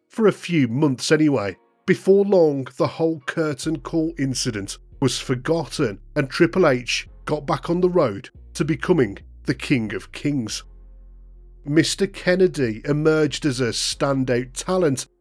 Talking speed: 140 wpm